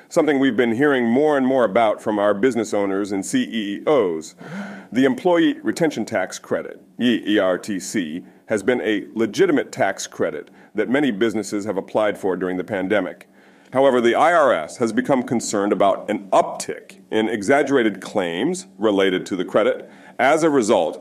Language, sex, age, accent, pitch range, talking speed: English, male, 40-59, American, 100-140 Hz, 155 wpm